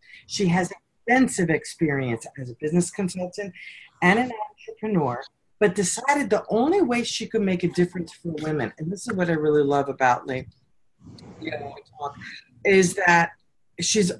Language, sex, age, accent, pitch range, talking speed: English, female, 40-59, American, 145-180 Hz, 150 wpm